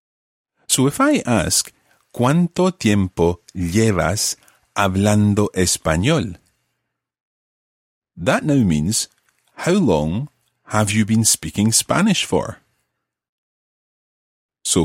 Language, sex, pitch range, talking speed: English, male, 85-105 Hz, 85 wpm